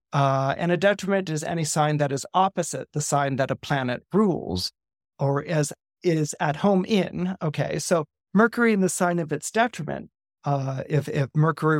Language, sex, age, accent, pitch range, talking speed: English, male, 40-59, American, 145-185 Hz, 180 wpm